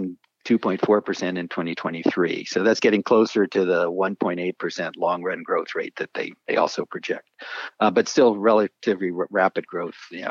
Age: 50-69